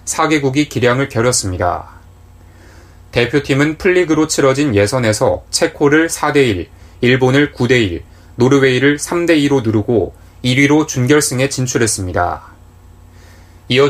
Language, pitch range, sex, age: Korean, 90-145 Hz, male, 20-39